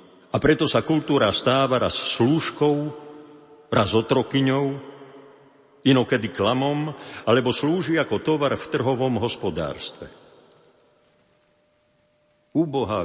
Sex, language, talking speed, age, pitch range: male, Slovak, 85 wpm, 50-69, 105-135 Hz